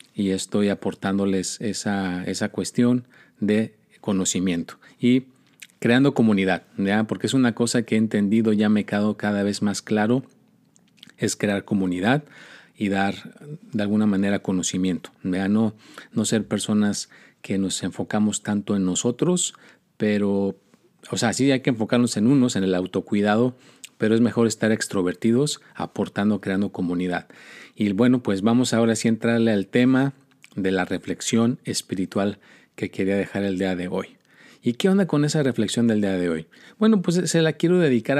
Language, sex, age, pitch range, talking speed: Spanish, male, 40-59, 100-125 Hz, 160 wpm